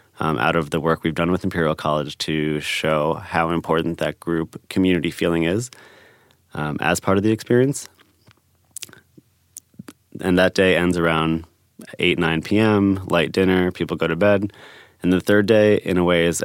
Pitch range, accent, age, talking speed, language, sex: 85-95 Hz, American, 20-39, 170 wpm, English, male